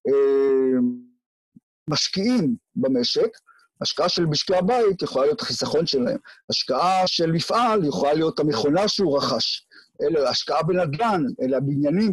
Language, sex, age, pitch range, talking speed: Hebrew, male, 50-69, 140-235 Hz, 115 wpm